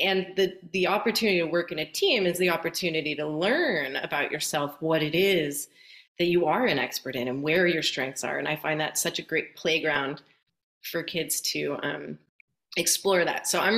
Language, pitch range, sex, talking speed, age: English, 160-195 Hz, female, 200 wpm, 30-49